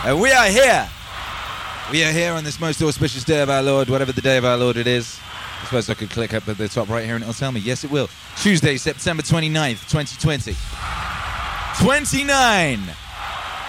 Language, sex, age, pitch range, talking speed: English, male, 20-39, 125-165 Hz, 200 wpm